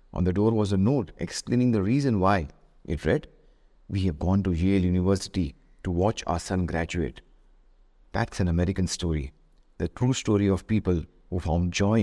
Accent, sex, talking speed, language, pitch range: Indian, male, 175 wpm, English, 85-110 Hz